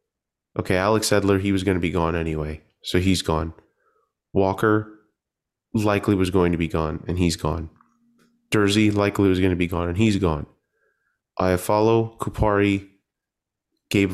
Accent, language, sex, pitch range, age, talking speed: American, English, male, 90-110 Hz, 30-49, 155 wpm